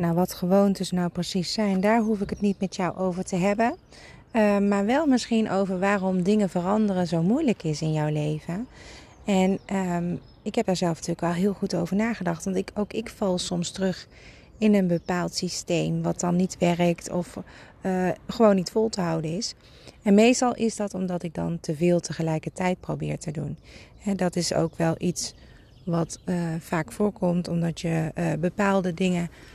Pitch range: 175-210 Hz